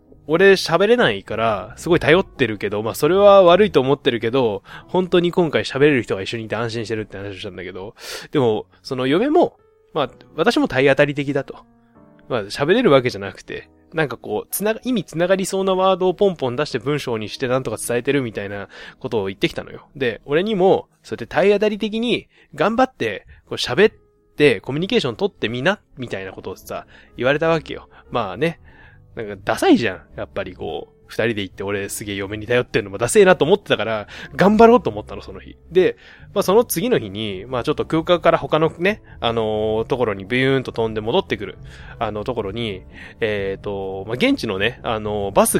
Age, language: 20-39, Japanese